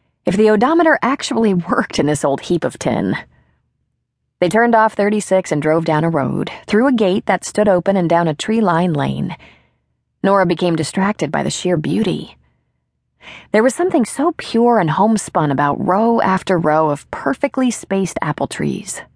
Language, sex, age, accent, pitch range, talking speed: English, female, 30-49, American, 160-210 Hz, 170 wpm